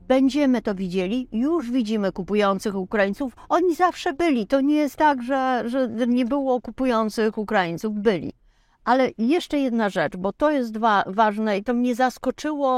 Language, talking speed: Polish, 160 wpm